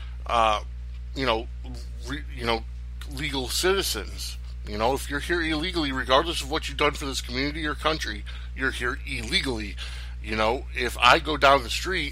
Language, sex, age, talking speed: English, male, 60-79, 175 wpm